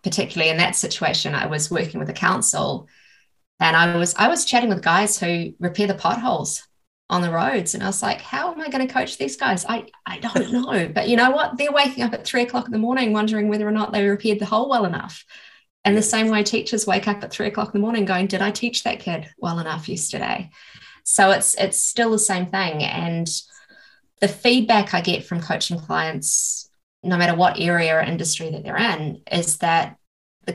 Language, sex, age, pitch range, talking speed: English, female, 20-39, 170-220 Hz, 220 wpm